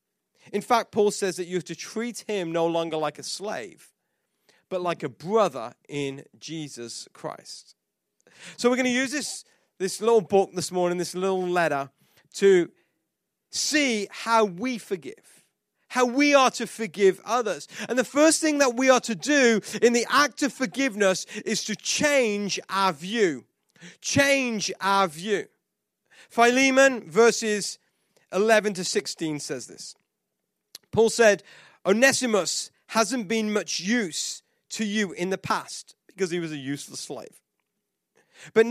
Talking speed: 145 wpm